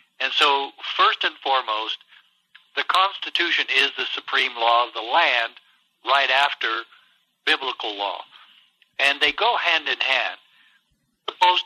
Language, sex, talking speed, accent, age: English, male, 130 wpm, American, 60-79